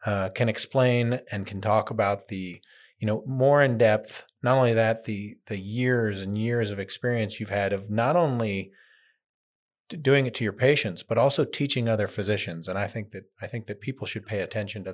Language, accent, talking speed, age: English, American, 200 wpm, 30-49